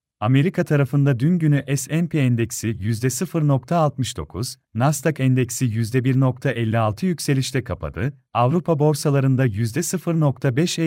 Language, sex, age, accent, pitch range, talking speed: Turkish, male, 40-59, native, 125-150 Hz, 85 wpm